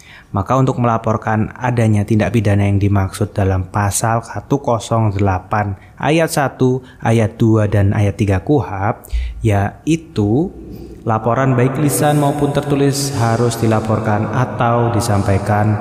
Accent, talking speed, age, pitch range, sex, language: native, 110 wpm, 20-39, 105-130 Hz, male, Indonesian